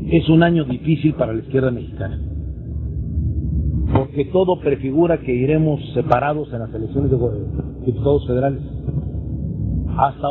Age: 50-69